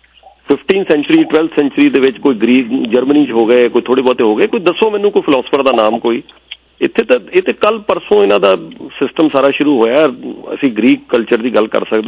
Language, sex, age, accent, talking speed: English, male, 40-59, Indian, 135 wpm